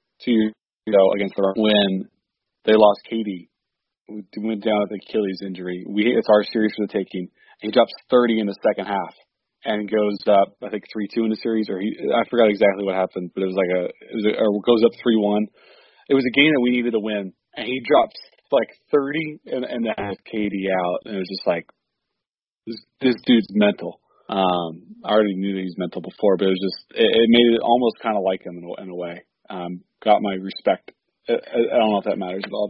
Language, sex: English, male